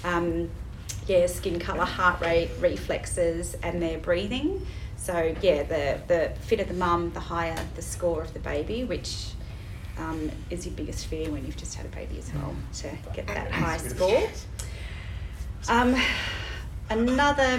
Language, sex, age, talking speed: English, female, 30-49, 155 wpm